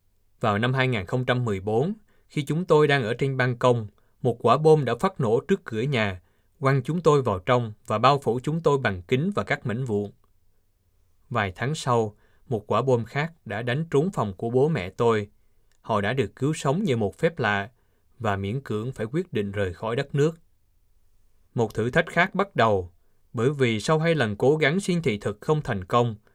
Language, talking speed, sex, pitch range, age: Vietnamese, 205 wpm, male, 100-140 Hz, 20-39